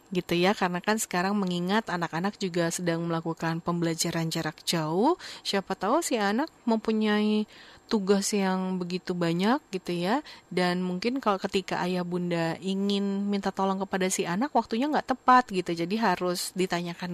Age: 30-49